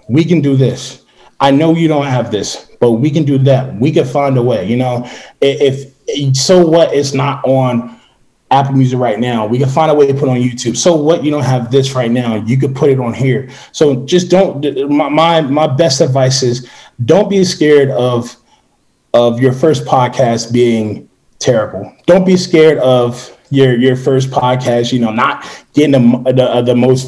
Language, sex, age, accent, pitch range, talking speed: English, male, 20-39, American, 125-145 Hz, 200 wpm